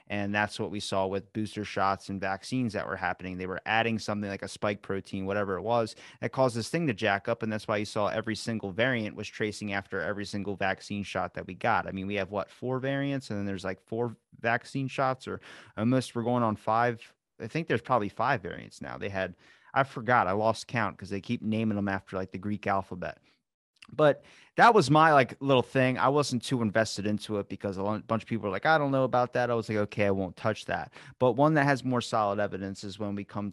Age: 30-49